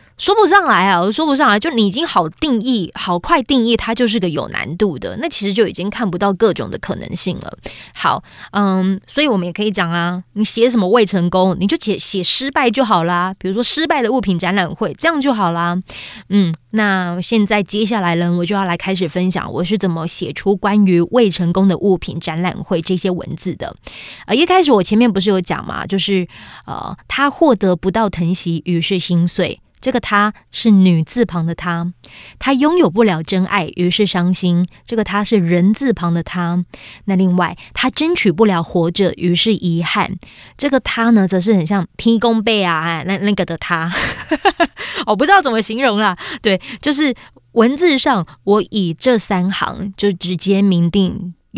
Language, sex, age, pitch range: Chinese, female, 20-39, 180-225 Hz